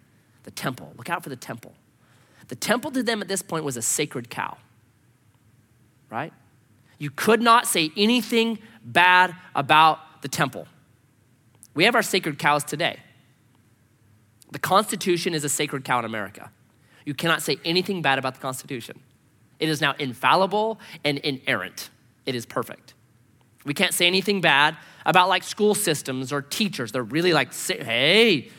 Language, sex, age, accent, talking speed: English, male, 30-49, American, 155 wpm